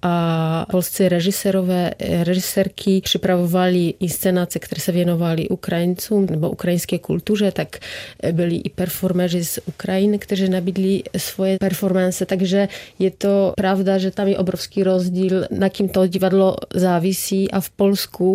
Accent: native